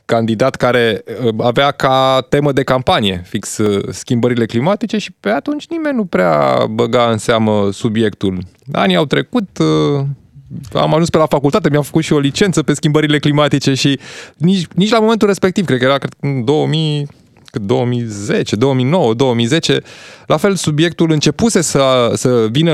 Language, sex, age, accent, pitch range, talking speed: Romanian, male, 20-39, native, 115-160 Hz, 150 wpm